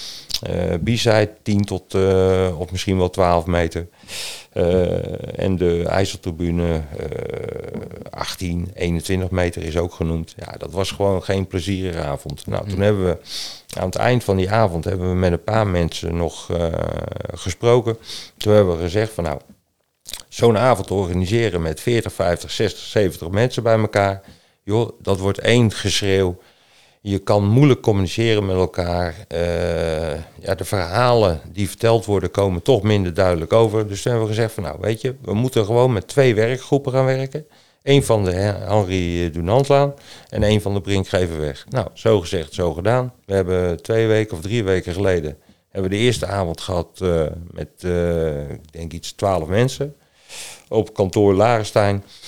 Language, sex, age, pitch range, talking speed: Dutch, male, 40-59, 90-110 Hz, 160 wpm